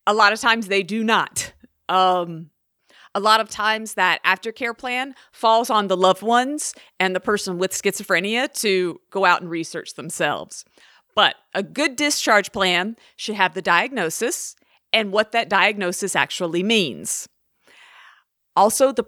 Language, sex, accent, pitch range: English, female, American, 185-230 Hz